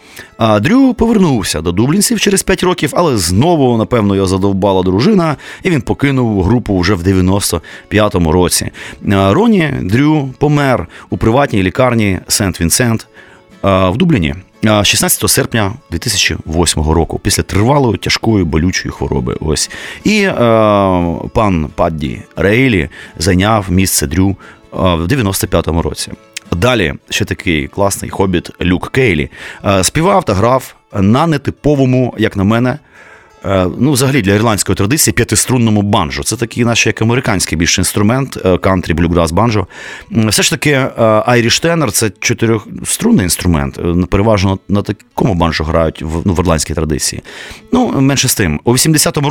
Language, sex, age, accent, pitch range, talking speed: Ukrainian, male, 30-49, native, 95-130 Hz, 130 wpm